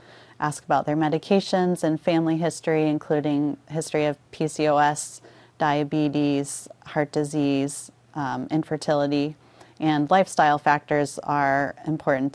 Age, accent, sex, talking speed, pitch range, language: 30-49, American, female, 100 wpm, 145-165 Hz, English